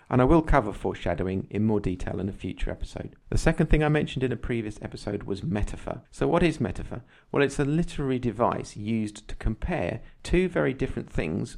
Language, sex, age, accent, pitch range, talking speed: English, male, 40-59, British, 95-130 Hz, 205 wpm